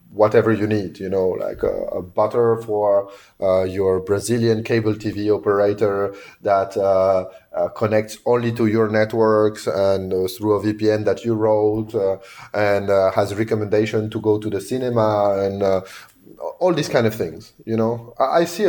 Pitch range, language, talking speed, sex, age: 100-115 Hz, English, 175 wpm, male, 30-49